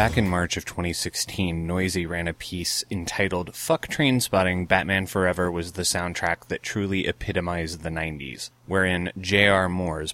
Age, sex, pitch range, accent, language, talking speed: 30-49, male, 85-105 Hz, American, English, 150 wpm